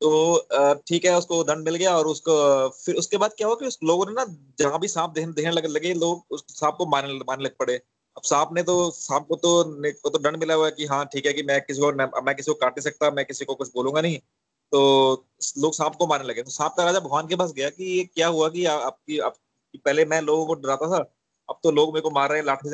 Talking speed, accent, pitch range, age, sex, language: 265 wpm, native, 145-190 Hz, 30-49, male, Hindi